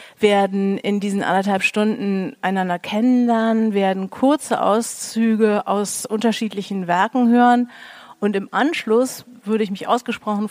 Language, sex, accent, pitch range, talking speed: German, female, German, 200-240 Hz, 120 wpm